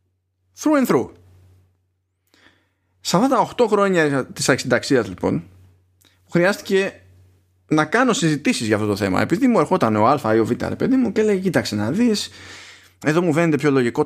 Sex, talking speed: male, 165 wpm